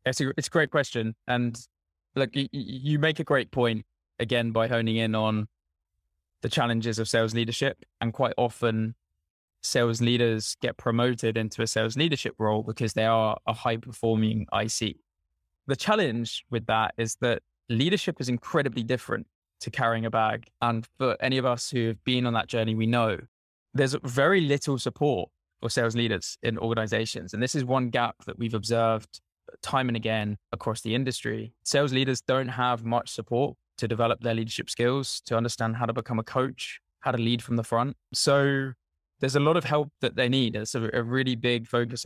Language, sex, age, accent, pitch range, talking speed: English, male, 20-39, British, 110-130 Hz, 190 wpm